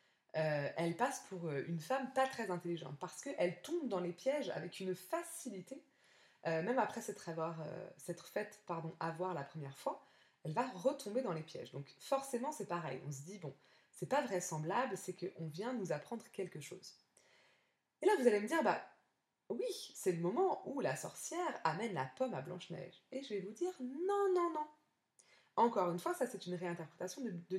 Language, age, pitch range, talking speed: French, 20-39, 160-260 Hz, 195 wpm